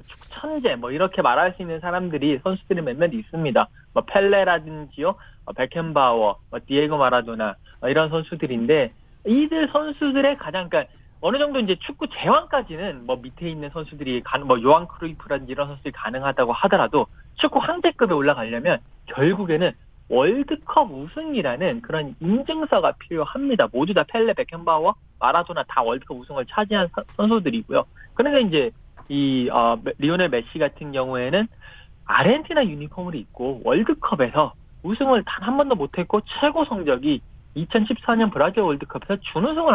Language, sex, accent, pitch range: Korean, male, native, 145-235 Hz